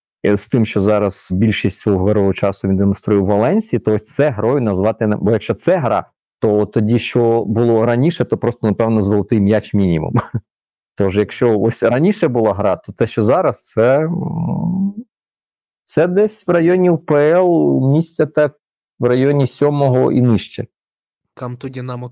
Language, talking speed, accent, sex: Ukrainian, 160 wpm, native, male